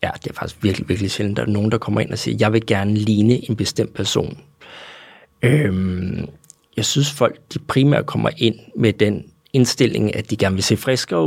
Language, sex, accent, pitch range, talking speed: Danish, male, native, 105-130 Hz, 210 wpm